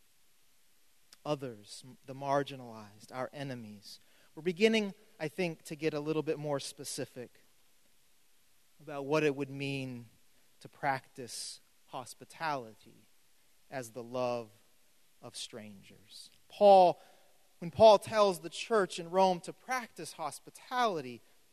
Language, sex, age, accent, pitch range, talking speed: English, male, 30-49, American, 150-245 Hz, 110 wpm